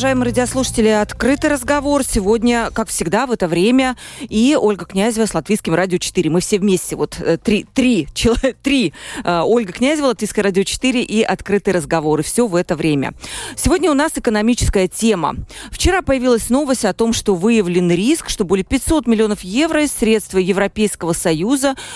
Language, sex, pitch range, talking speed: Russian, female, 185-250 Hz, 160 wpm